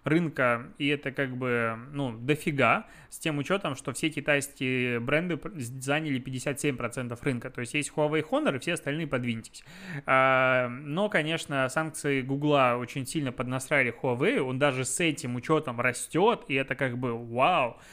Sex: male